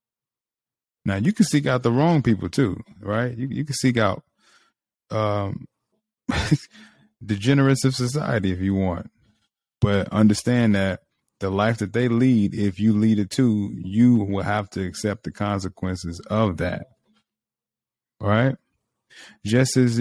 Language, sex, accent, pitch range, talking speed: English, male, American, 100-115 Hz, 145 wpm